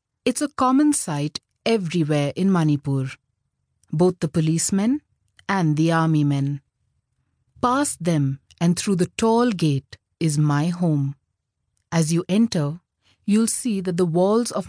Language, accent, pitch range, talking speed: English, Indian, 145-215 Hz, 135 wpm